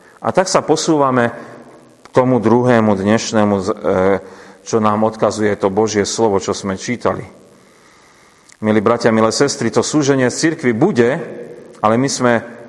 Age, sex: 40-59, male